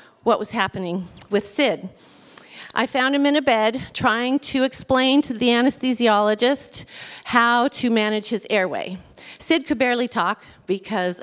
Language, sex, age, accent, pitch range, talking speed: English, female, 40-59, American, 185-255 Hz, 145 wpm